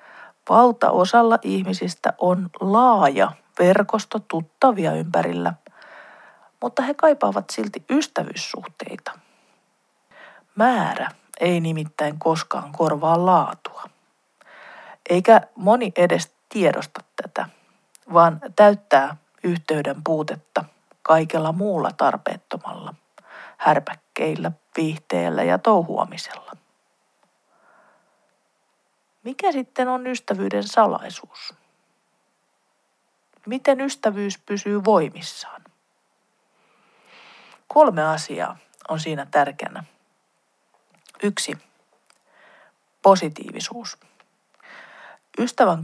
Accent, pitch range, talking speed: native, 155-225 Hz, 65 wpm